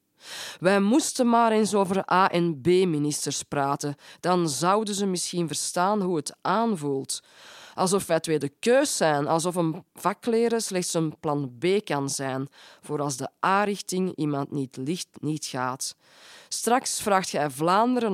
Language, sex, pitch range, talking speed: Dutch, female, 150-195 Hz, 150 wpm